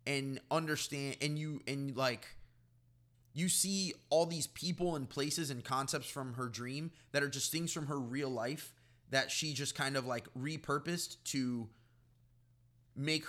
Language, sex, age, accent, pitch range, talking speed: English, male, 20-39, American, 120-140 Hz, 160 wpm